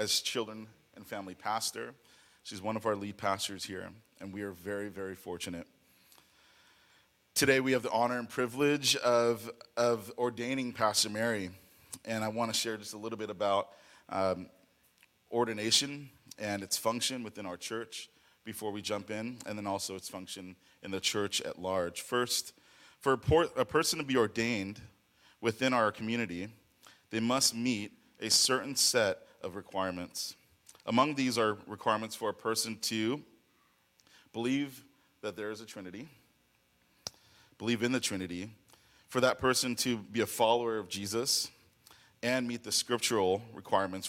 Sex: male